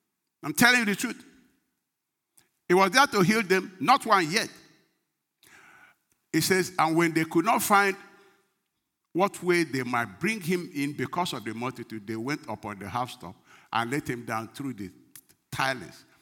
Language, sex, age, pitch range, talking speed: English, male, 50-69, 95-165 Hz, 170 wpm